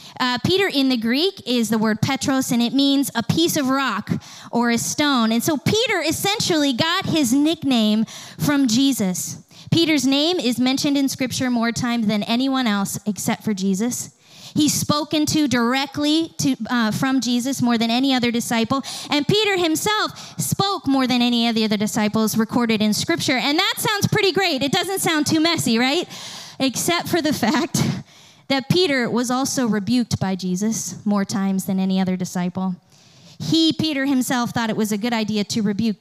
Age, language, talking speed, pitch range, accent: 20-39, English, 180 wpm, 210-290 Hz, American